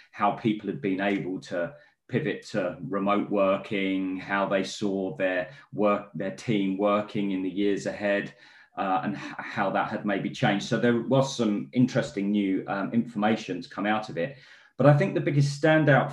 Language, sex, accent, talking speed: English, male, British, 180 wpm